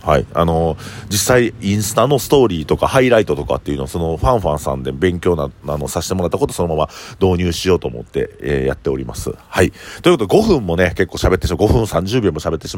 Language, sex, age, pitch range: Japanese, male, 40-59, 80-115 Hz